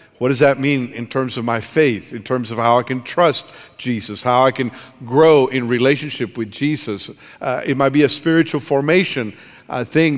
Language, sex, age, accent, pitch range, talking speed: English, male, 50-69, American, 130-160 Hz, 200 wpm